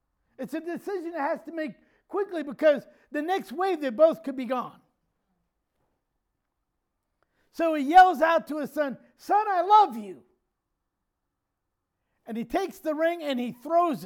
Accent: American